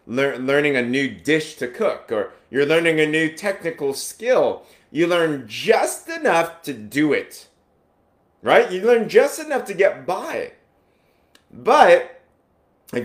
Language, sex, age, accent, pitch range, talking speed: English, male, 30-49, American, 130-185 Hz, 145 wpm